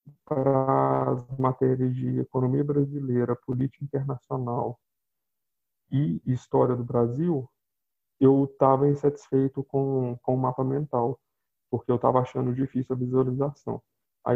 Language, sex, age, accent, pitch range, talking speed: Portuguese, male, 20-39, Brazilian, 125-140 Hz, 115 wpm